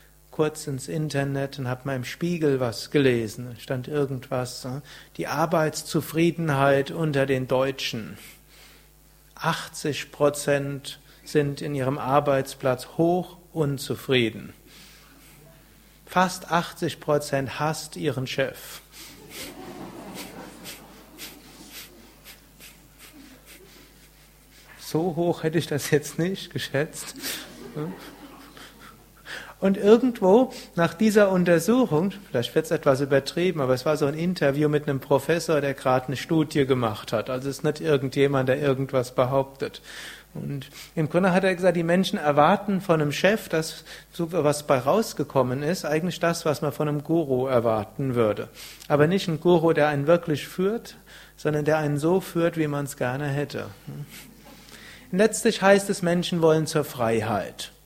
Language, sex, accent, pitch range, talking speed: German, male, German, 135-170 Hz, 130 wpm